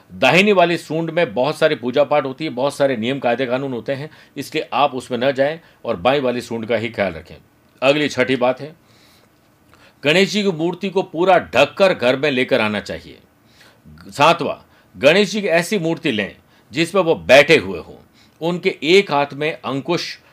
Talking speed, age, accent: 190 wpm, 50-69, native